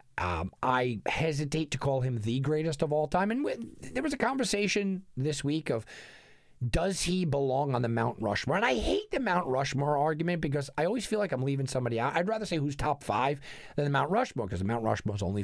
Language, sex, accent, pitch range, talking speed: English, male, American, 115-160 Hz, 220 wpm